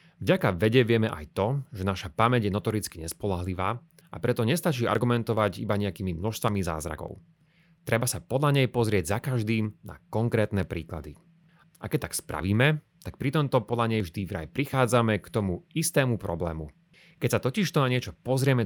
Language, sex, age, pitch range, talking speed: Slovak, male, 30-49, 100-155 Hz, 165 wpm